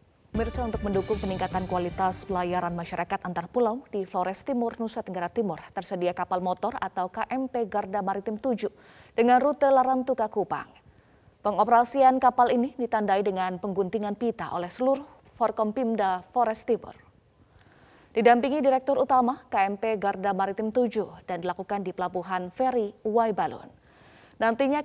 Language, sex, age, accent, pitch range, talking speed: Indonesian, female, 20-39, native, 195-250 Hz, 130 wpm